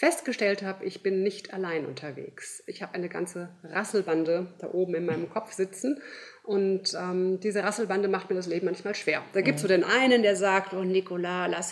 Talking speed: 200 wpm